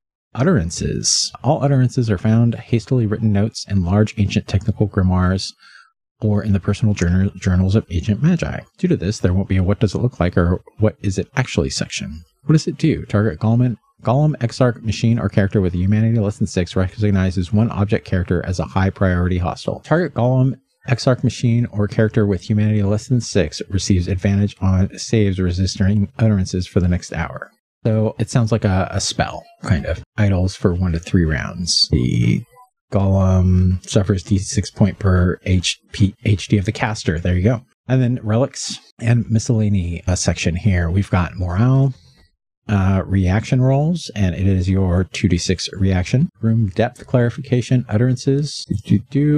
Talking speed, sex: 175 wpm, male